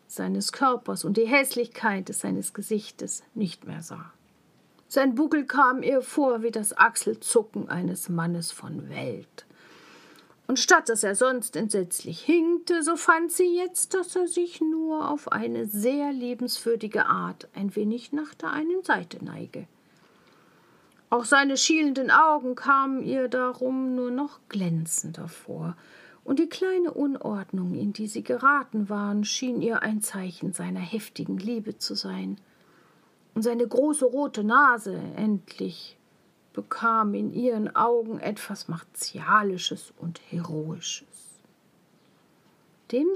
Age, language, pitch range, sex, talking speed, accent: 50-69, German, 200-280 Hz, female, 130 wpm, German